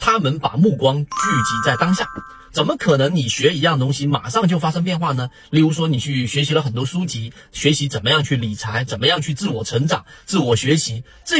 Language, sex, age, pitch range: Chinese, male, 40-59, 125-165 Hz